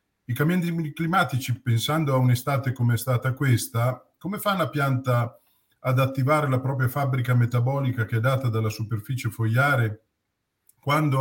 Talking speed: 145 wpm